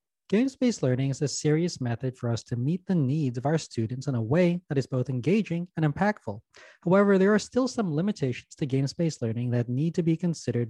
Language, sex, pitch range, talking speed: English, male, 125-170 Hz, 220 wpm